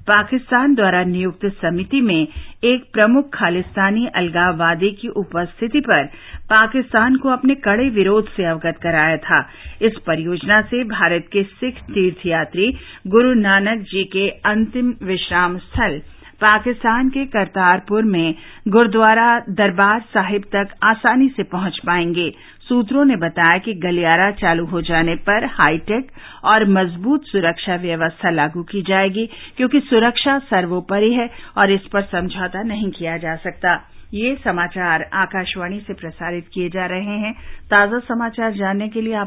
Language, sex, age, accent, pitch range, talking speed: Hindi, female, 50-69, native, 175-225 Hz, 120 wpm